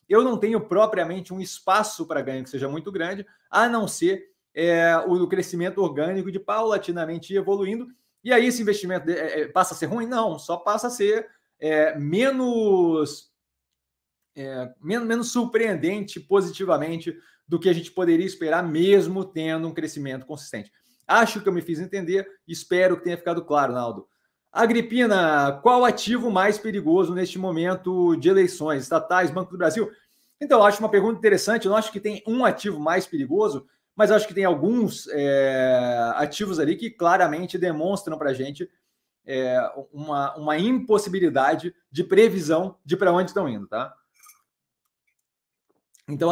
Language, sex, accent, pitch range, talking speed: Portuguese, male, Brazilian, 160-210 Hz, 150 wpm